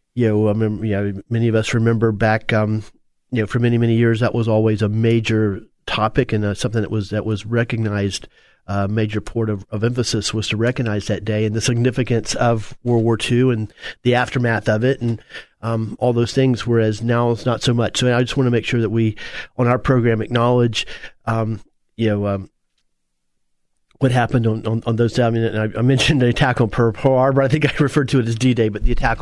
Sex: male